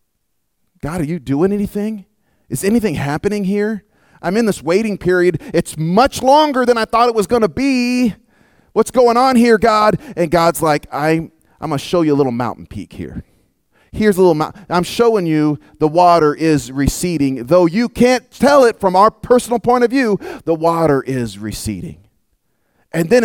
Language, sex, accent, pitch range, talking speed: English, male, American, 150-215 Hz, 180 wpm